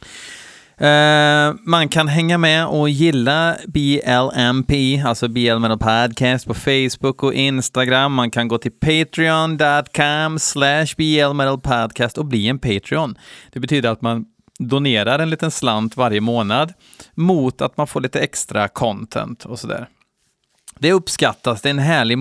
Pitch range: 115-155 Hz